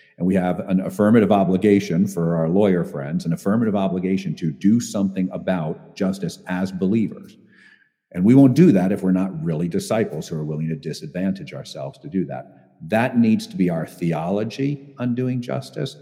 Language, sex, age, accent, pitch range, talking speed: English, male, 50-69, American, 95-140 Hz, 180 wpm